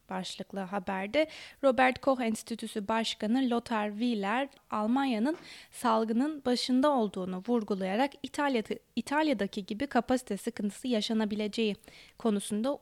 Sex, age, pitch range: female, 20-39, 205-260 Hz